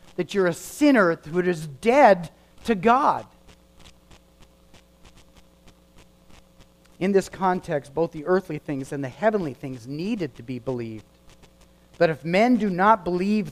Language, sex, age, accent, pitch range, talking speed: English, male, 50-69, American, 135-205 Hz, 135 wpm